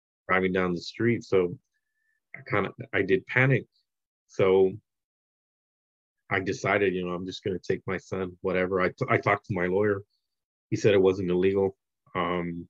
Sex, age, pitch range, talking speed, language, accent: male, 30-49, 90-105 Hz, 170 wpm, English, American